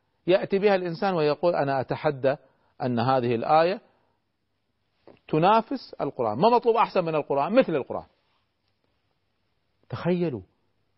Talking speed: 105 wpm